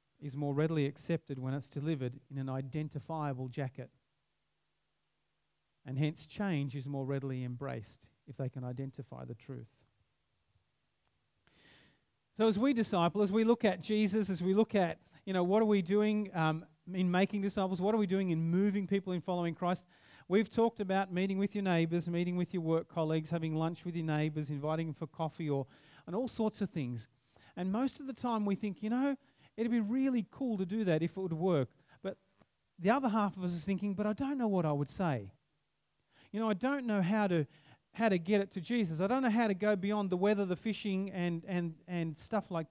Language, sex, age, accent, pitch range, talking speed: English, male, 40-59, Australian, 150-205 Hz, 210 wpm